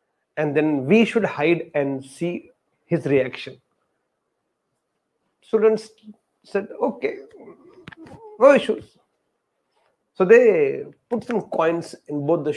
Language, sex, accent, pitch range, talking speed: English, male, Indian, 140-170 Hz, 105 wpm